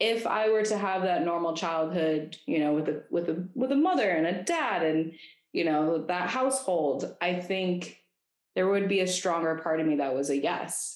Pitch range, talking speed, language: 145-175 Hz, 215 wpm, English